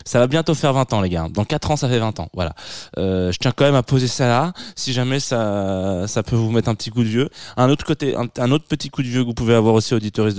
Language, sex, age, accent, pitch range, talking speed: French, male, 20-39, French, 100-130 Hz, 305 wpm